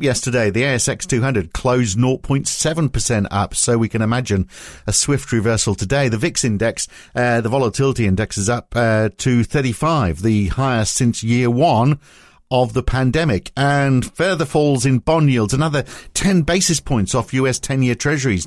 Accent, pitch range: British, 110-140 Hz